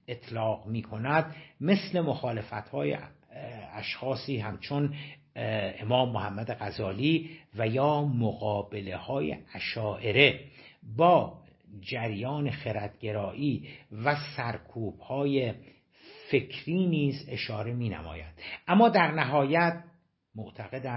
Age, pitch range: 60-79, 110-155 Hz